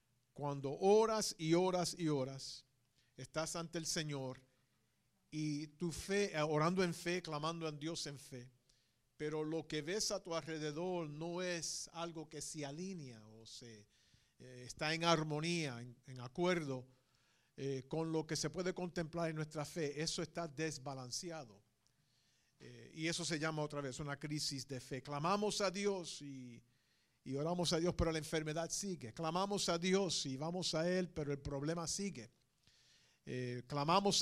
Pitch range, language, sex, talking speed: 135-170 Hz, English, male, 160 wpm